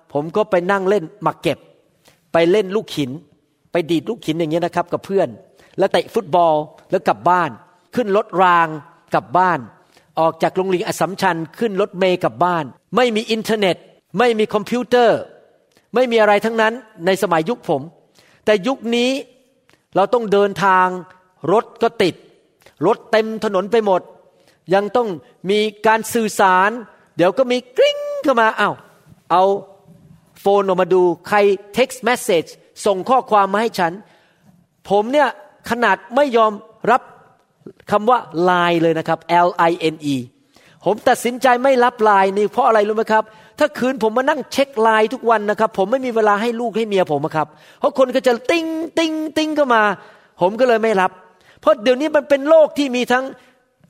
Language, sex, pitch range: Thai, male, 175-245 Hz